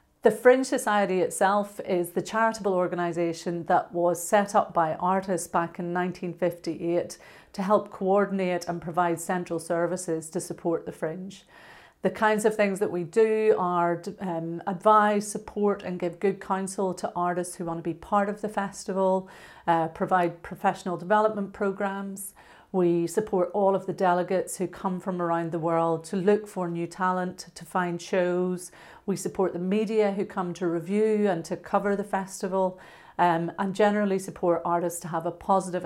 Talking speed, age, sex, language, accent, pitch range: 165 wpm, 40-59, female, English, British, 170-200 Hz